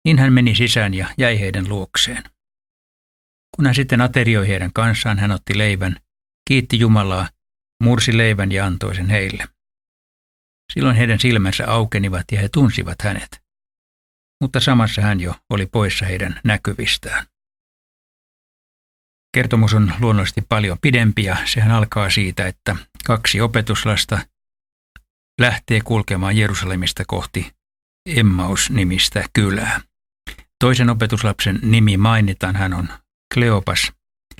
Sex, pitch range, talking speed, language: male, 95-115 Hz, 115 wpm, Finnish